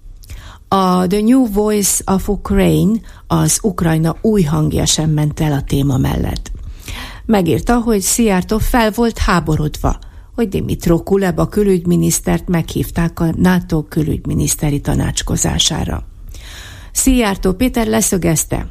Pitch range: 150-195 Hz